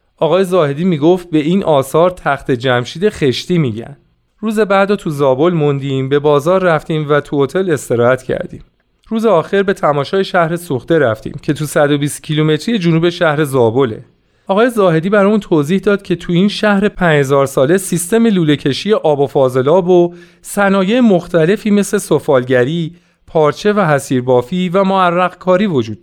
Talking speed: 150 wpm